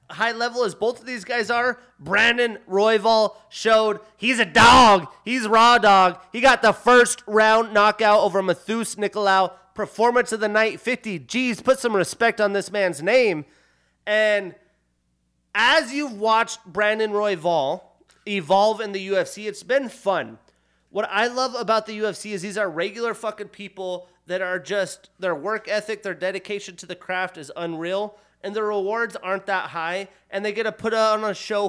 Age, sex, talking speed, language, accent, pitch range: 30-49, male, 170 wpm, English, American, 185-225 Hz